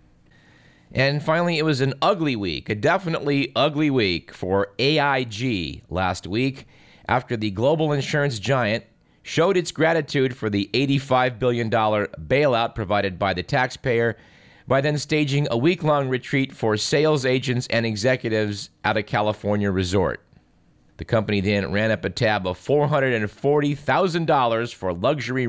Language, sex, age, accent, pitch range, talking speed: English, male, 40-59, American, 105-140 Hz, 135 wpm